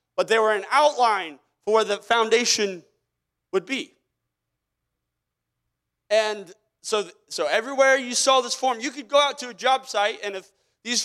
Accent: American